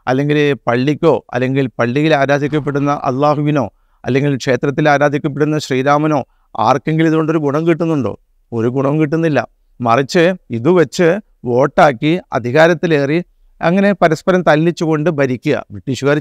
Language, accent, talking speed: Malayalam, native, 100 wpm